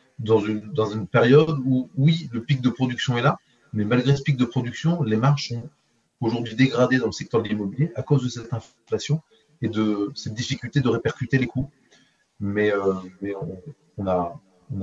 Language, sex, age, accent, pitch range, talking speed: French, male, 30-49, French, 105-135 Hz, 200 wpm